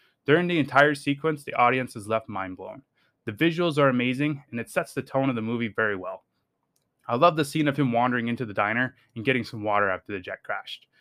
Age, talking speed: 20-39, 230 wpm